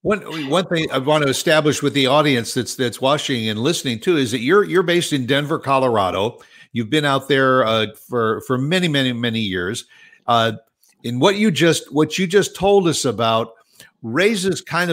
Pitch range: 125-160 Hz